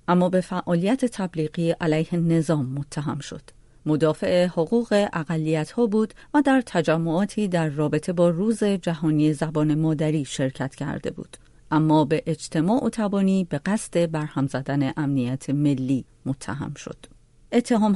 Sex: female